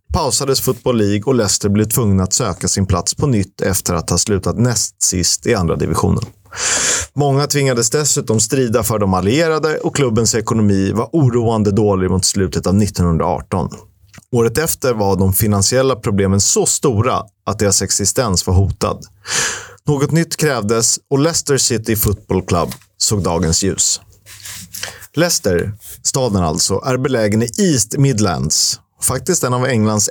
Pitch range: 95-130 Hz